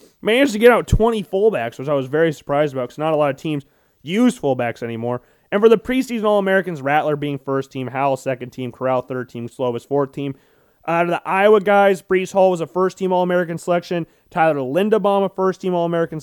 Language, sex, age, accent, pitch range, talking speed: English, male, 30-49, American, 150-200 Hz, 205 wpm